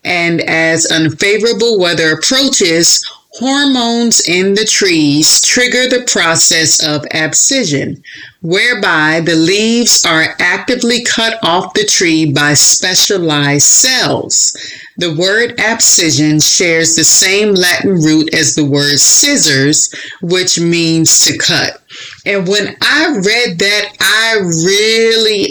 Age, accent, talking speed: 30-49, American, 115 wpm